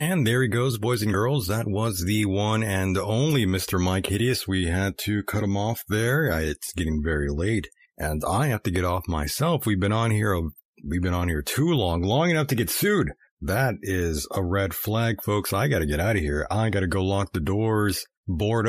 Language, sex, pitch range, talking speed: English, male, 95-120 Hz, 225 wpm